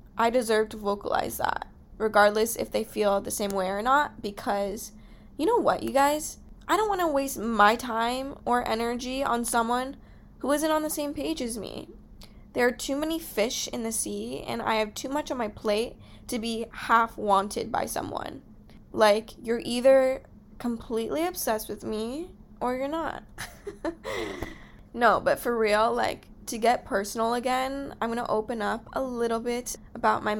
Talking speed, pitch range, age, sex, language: 175 wpm, 210-255 Hz, 10-29, female, English